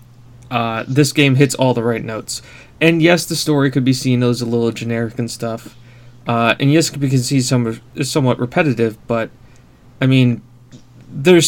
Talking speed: 180 wpm